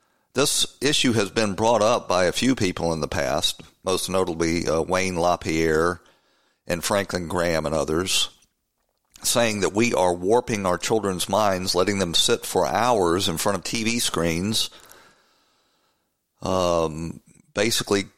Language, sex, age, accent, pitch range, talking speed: English, male, 50-69, American, 85-110 Hz, 140 wpm